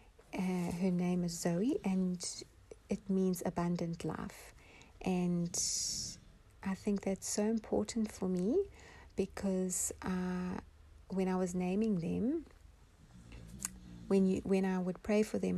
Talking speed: 125 wpm